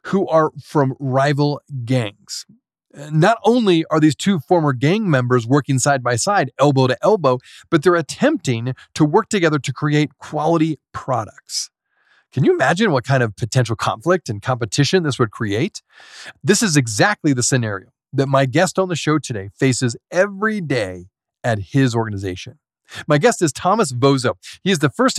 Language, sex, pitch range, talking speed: English, male, 125-170 Hz, 165 wpm